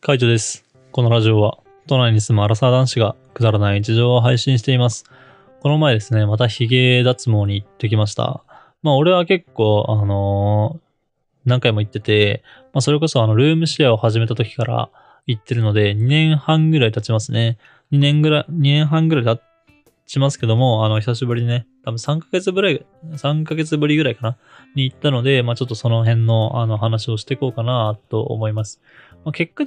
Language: Japanese